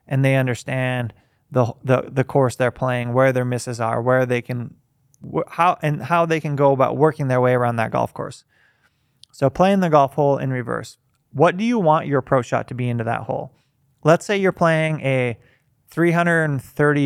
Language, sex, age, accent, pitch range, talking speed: English, male, 20-39, American, 125-150 Hz, 195 wpm